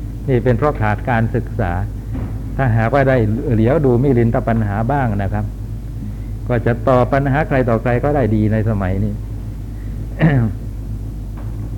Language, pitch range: Thai, 105-120 Hz